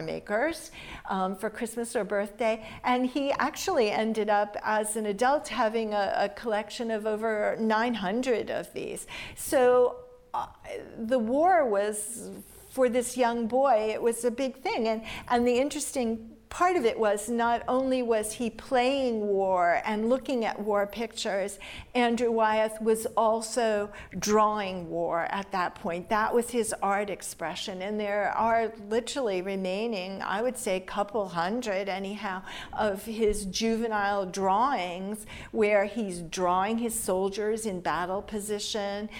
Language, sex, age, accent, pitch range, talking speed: English, female, 50-69, American, 200-235 Hz, 145 wpm